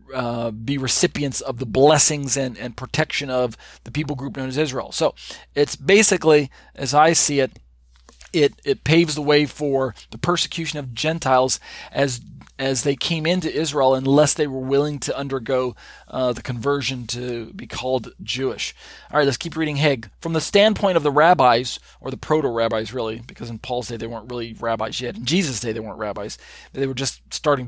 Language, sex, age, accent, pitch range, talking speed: English, male, 40-59, American, 130-155 Hz, 190 wpm